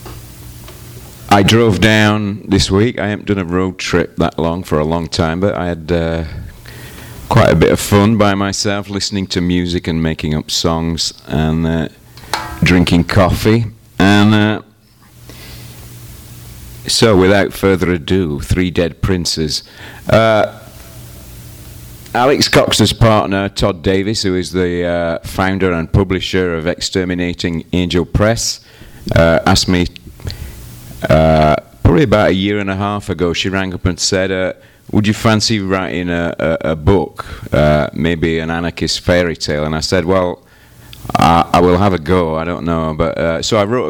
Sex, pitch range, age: male, 80-100 Hz, 40-59